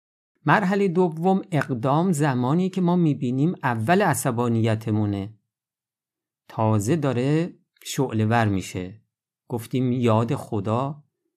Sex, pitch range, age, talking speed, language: male, 110-155 Hz, 50-69, 85 wpm, Persian